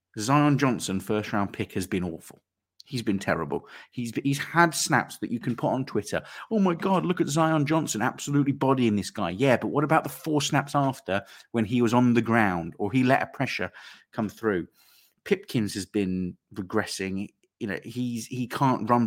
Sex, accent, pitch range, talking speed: male, British, 100-140 Hz, 200 wpm